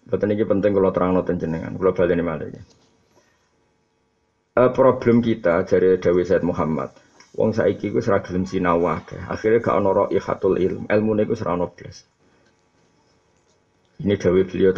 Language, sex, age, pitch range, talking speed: Indonesian, male, 50-69, 90-120 Hz, 95 wpm